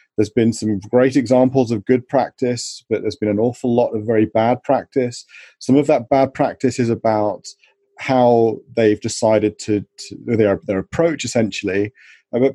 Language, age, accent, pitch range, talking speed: English, 30-49, British, 110-130 Hz, 165 wpm